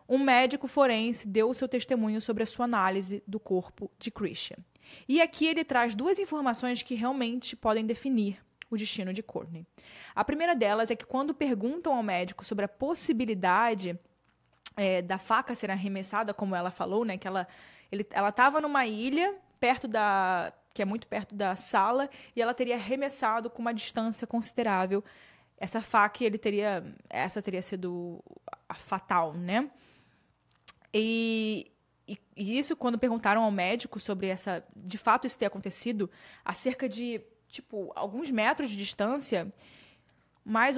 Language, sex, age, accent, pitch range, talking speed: Portuguese, female, 20-39, Brazilian, 205-255 Hz, 155 wpm